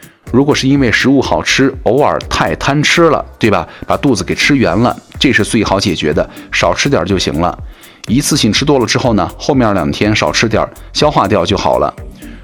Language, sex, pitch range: Chinese, male, 95-130 Hz